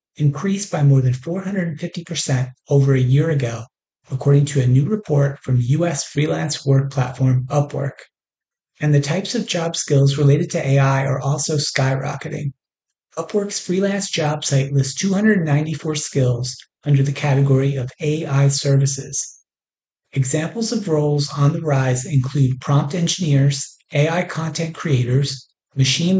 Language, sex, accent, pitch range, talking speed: English, male, American, 135-160 Hz, 135 wpm